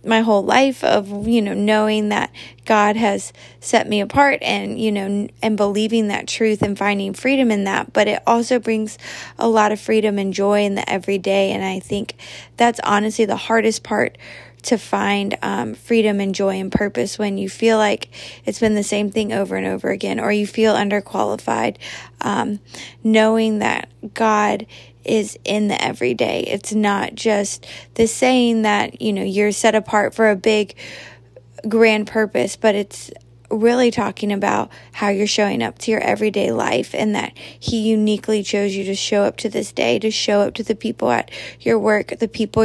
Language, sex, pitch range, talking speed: English, female, 200-220 Hz, 185 wpm